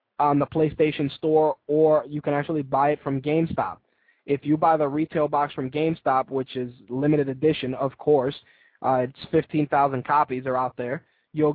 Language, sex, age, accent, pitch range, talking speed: English, male, 20-39, American, 145-160 Hz, 175 wpm